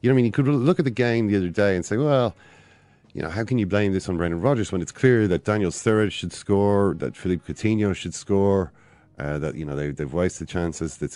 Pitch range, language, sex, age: 80-100 Hz, English, male, 30-49